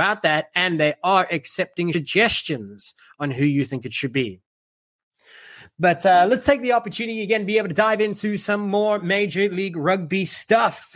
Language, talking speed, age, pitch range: English, 175 wpm, 30-49, 145-195 Hz